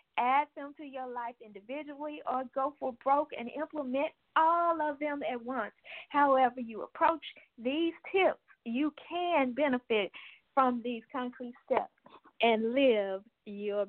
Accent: American